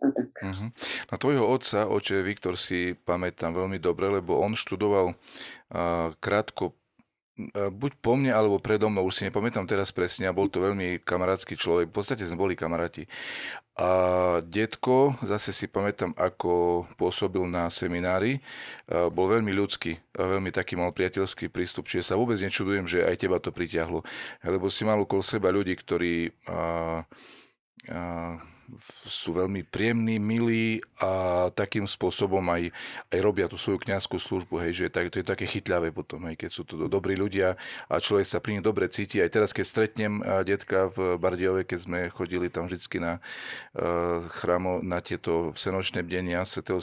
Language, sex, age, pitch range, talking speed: Slovak, male, 40-59, 85-100 Hz, 170 wpm